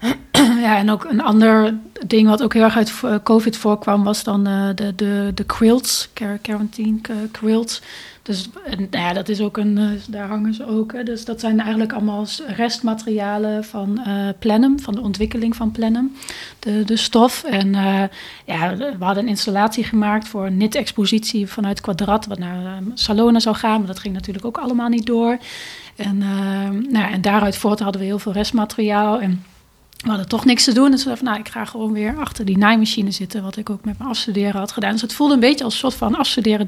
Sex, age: female, 30-49